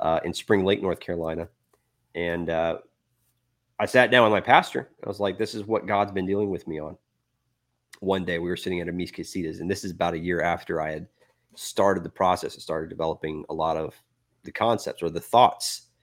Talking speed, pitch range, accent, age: 215 wpm, 90-110 Hz, American, 30-49